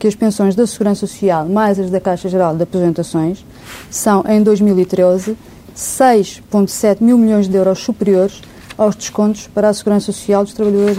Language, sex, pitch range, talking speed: Portuguese, female, 190-225 Hz, 165 wpm